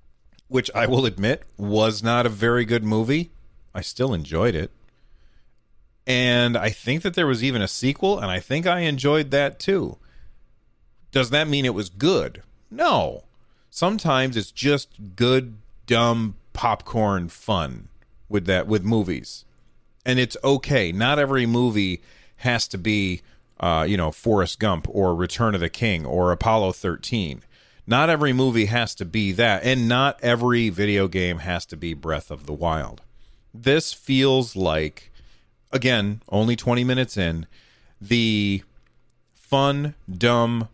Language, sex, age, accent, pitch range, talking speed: English, male, 40-59, American, 100-125 Hz, 145 wpm